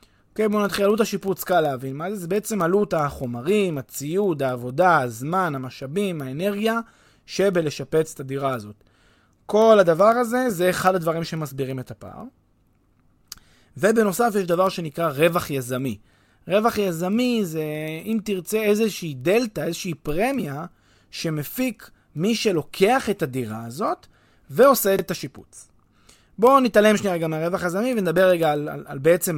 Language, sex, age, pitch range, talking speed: Hebrew, male, 30-49, 135-200 Hz, 140 wpm